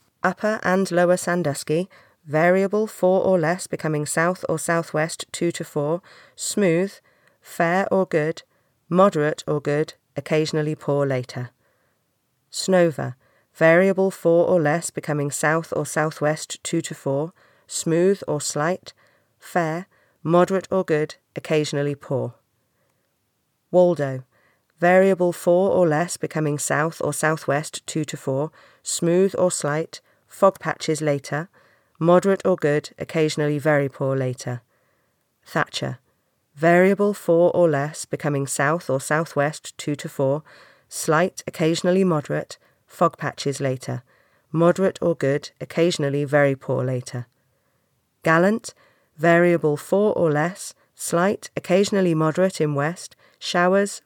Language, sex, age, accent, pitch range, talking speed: English, female, 40-59, British, 145-180 Hz, 120 wpm